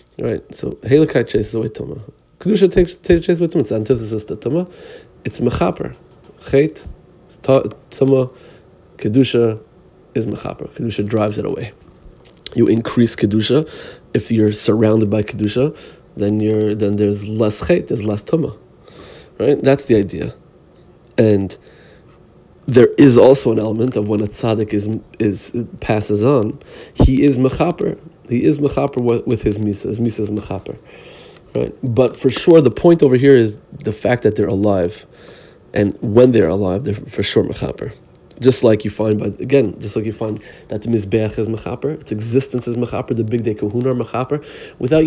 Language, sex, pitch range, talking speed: English, male, 105-135 Hz, 165 wpm